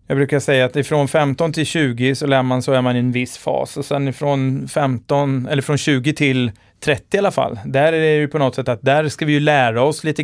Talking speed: 265 wpm